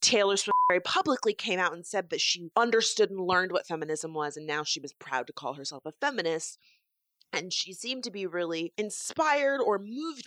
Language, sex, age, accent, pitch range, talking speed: English, female, 30-49, American, 155-200 Hz, 205 wpm